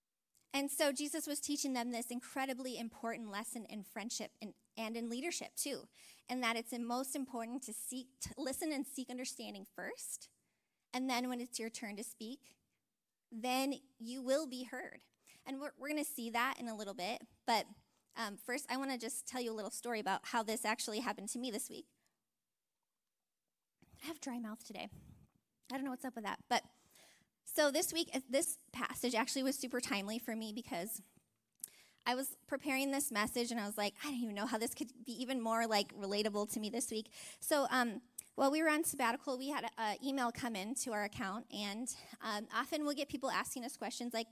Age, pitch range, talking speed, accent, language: 20-39, 225-270 Hz, 205 wpm, American, English